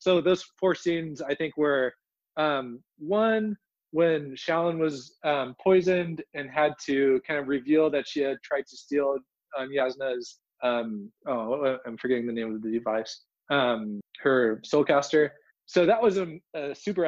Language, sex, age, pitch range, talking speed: English, male, 20-39, 135-165 Hz, 160 wpm